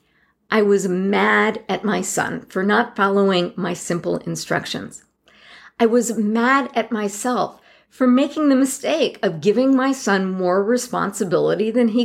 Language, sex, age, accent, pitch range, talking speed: English, female, 50-69, American, 195-260 Hz, 145 wpm